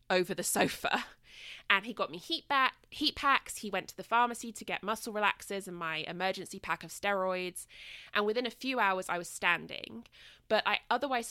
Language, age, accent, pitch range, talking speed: English, 20-39, British, 175-245 Hz, 195 wpm